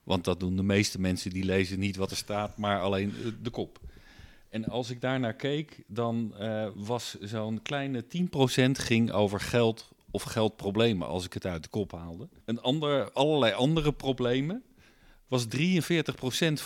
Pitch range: 100-125 Hz